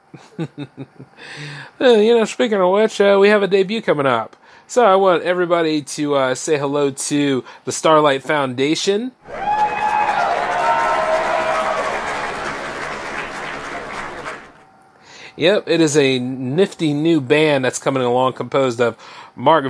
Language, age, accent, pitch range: English, 30-49, American, 125-160 Hz